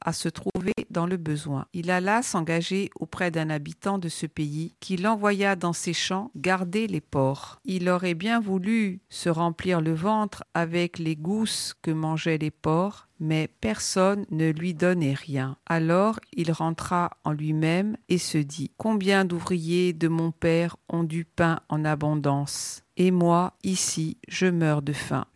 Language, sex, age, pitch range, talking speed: French, female, 50-69, 160-195 Hz, 165 wpm